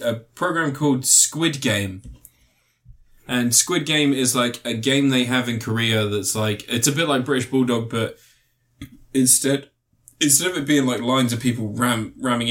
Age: 20-39